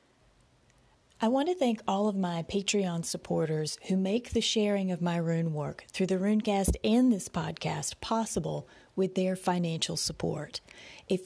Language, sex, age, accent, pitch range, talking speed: English, female, 30-49, American, 170-210 Hz, 155 wpm